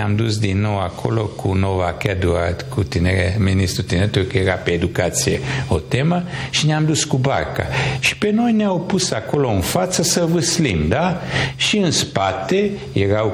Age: 60-79